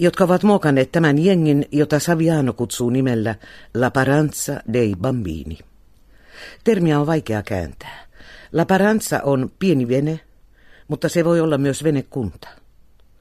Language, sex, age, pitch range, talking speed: Finnish, female, 50-69, 100-155 Hz, 125 wpm